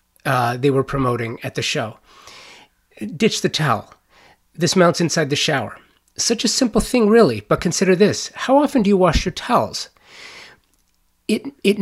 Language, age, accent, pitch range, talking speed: English, 30-49, American, 130-165 Hz, 160 wpm